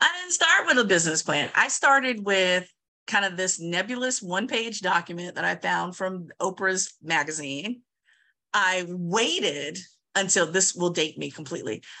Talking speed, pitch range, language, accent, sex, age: 150 wpm, 185-240 Hz, English, American, female, 40-59